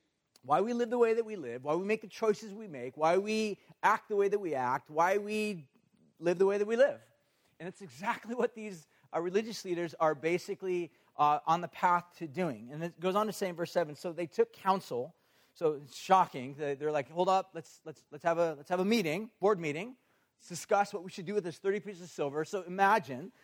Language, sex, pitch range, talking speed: English, male, 150-195 Hz, 235 wpm